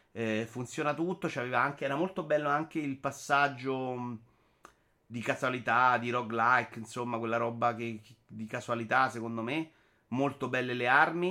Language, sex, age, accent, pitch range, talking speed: Italian, male, 30-49, native, 110-125 Hz, 135 wpm